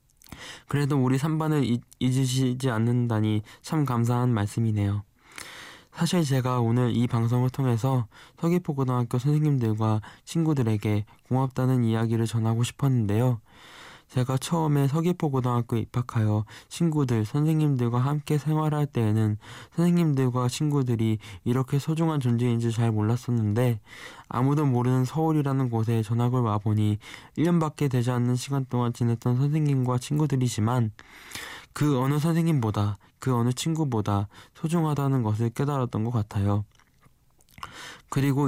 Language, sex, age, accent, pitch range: Korean, male, 20-39, native, 115-140 Hz